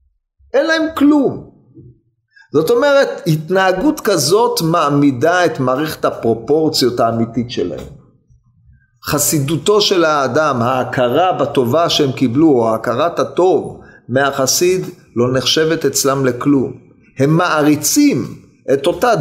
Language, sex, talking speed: Hebrew, male, 100 wpm